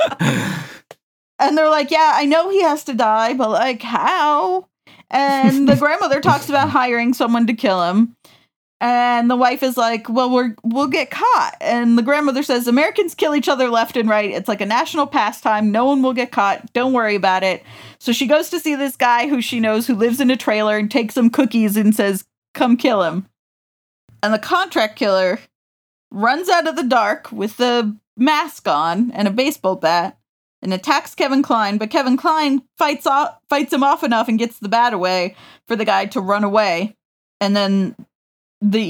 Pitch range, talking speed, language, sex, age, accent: 210-285 Hz, 195 wpm, English, female, 30-49, American